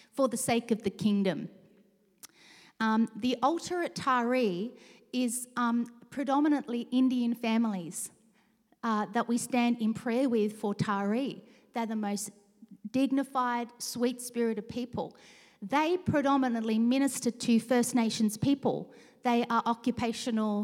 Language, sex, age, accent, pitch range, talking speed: English, female, 40-59, Australian, 220-270 Hz, 125 wpm